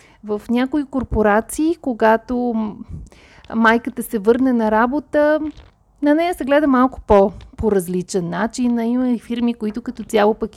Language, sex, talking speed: Bulgarian, female, 130 wpm